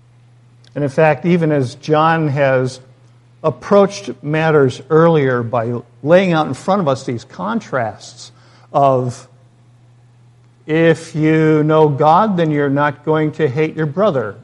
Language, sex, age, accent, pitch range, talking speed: English, male, 50-69, American, 120-155 Hz, 135 wpm